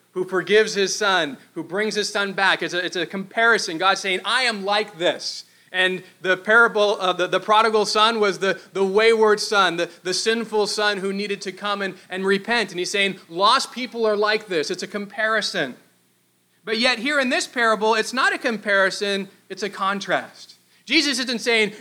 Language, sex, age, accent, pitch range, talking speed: English, male, 30-49, American, 185-225 Hz, 195 wpm